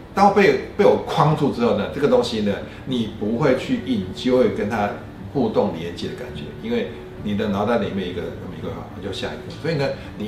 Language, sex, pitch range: Chinese, male, 95-130 Hz